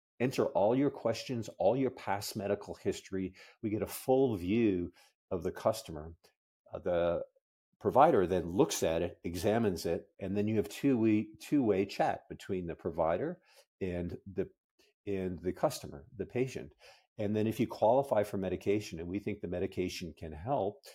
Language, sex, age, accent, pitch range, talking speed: English, male, 50-69, American, 95-110 Hz, 165 wpm